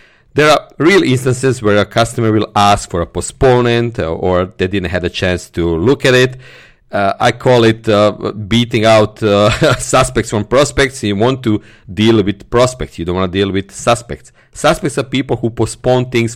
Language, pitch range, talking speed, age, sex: English, 100-130 Hz, 190 wpm, 40-59, male